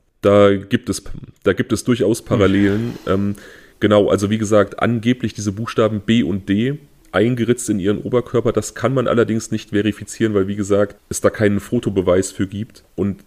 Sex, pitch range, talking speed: male, 100-120 Hz, 175 wpm